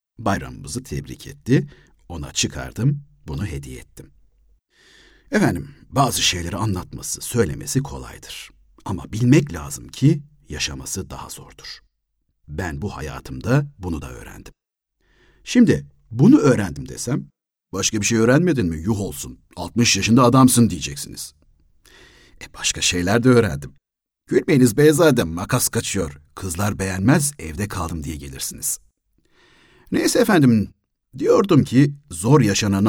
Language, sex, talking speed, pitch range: Turkish, male, 115 wpm, 75-120 Hz